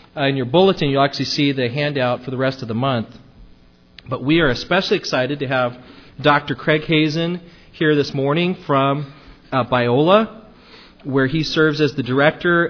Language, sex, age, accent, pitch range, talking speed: English, male, 40-59, American, 125-155 Hz, 170 wpm